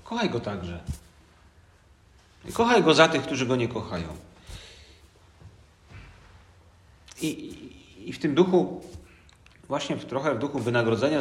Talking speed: 130 wpm